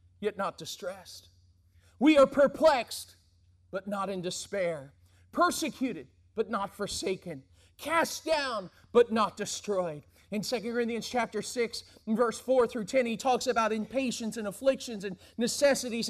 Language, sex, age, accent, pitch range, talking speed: English, male, 40-59, American, 230-310 Hz, 135 wpm